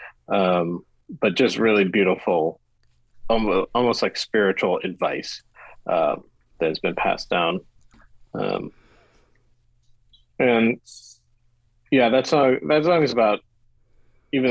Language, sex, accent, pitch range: English, male, American, 95-120 Hz